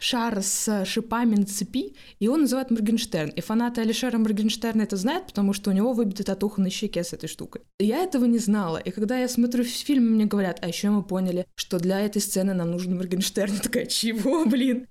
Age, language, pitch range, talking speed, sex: 20-39, Russian, 190-240 Hz, 215 wpm, female